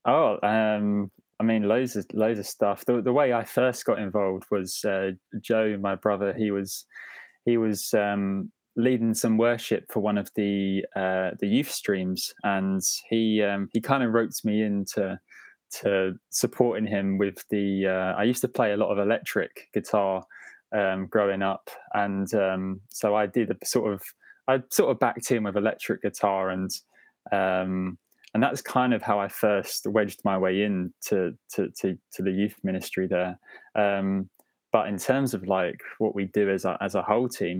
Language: English